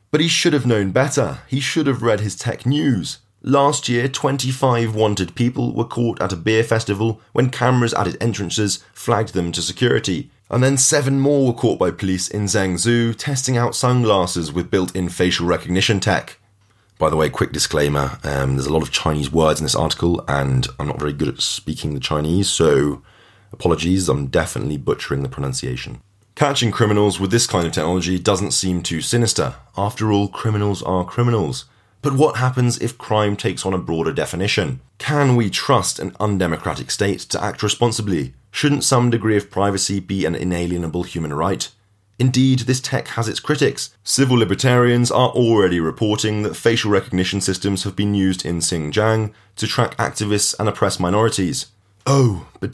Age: 30-49